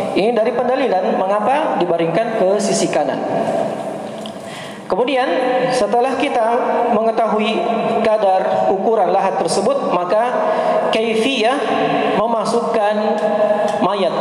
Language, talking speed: Indonesian, 85 wpm